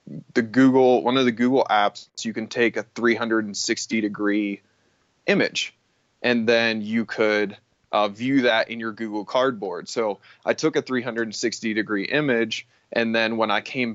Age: 20-39